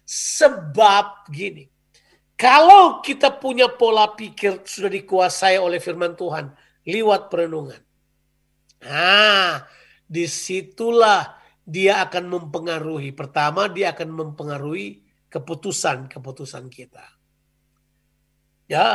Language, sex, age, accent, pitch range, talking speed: Indonesian, male, 40-59, native, 145-195 Hz, 80 wpm